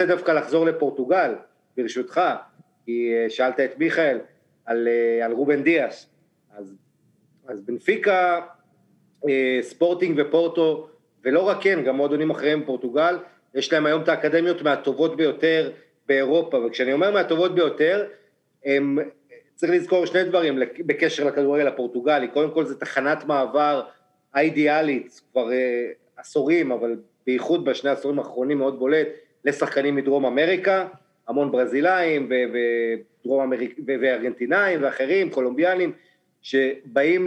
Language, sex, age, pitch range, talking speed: Hebrew, male, 40-59, 130-165 Hz, 120 wpm